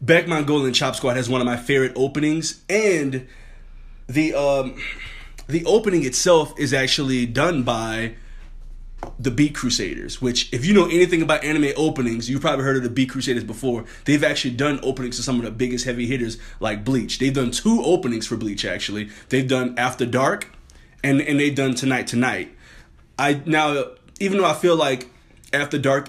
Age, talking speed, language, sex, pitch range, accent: 20-39, 180 wpm, English, male, 120-150 Hz, American